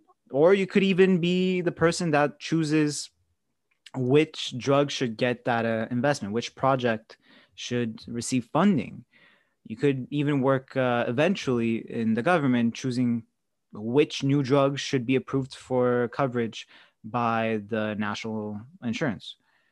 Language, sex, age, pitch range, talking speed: English, male, 20-39, 115-145 Hz, 130 wpm